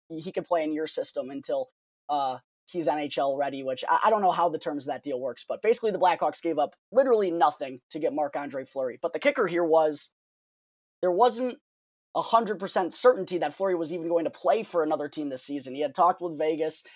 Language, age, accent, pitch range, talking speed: English, 20-39, American, 155-210 Hz, 215 wpm